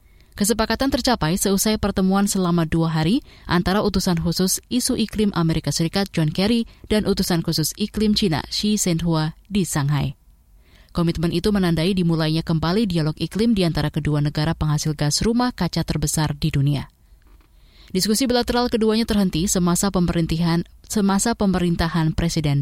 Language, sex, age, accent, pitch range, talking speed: Indonesian, female, 20-39, native, 155-205 Hz, 140 wpm